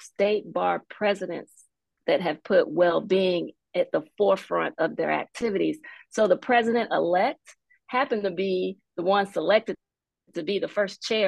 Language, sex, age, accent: English, female, 40-59, American